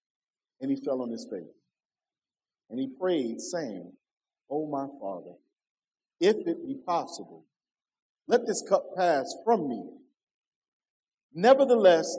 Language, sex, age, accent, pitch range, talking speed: English, male, 40-59, American, 185-275 Hz, 120 wpm